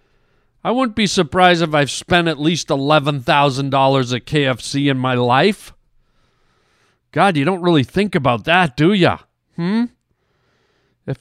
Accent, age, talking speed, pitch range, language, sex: American, 50-69, 140 wpm, 135-195 Hz, English, male